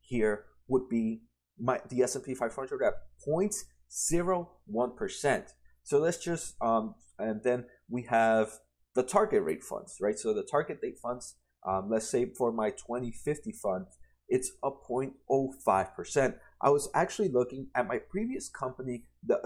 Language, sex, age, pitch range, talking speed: English, male, 30-49, 110-145 Hz, 150 wpm